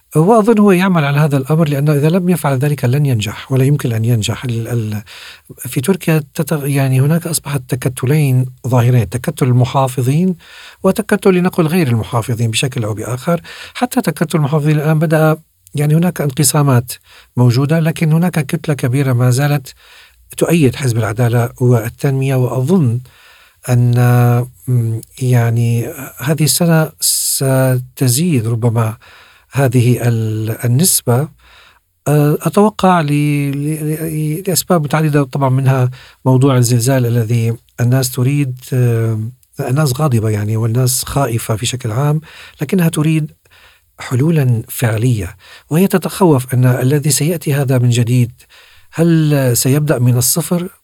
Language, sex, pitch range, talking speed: Arabic, male, 125-155 Hz, 115 wpm